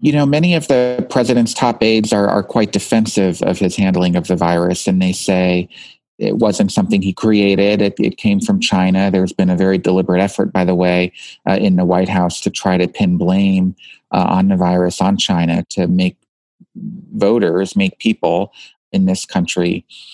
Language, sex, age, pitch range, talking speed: English, male, 40-59, 90-115 Hz, 190 wpm